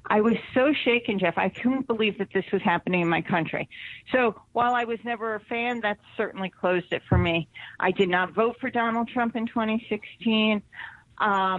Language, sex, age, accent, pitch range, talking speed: English, female, 40-59, American, 180-230 Hz, 190 wpm